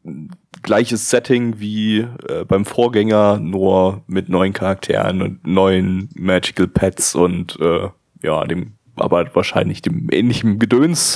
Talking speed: 125 wpm